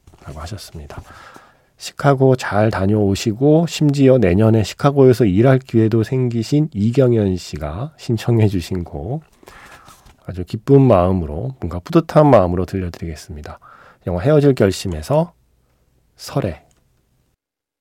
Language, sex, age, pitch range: Korean, male, 40-59, 90-130 Hz